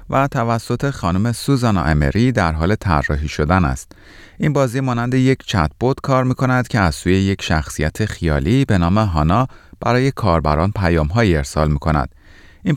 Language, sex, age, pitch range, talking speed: Persian, male, 30-49, 80-115 Hz, 150 wpm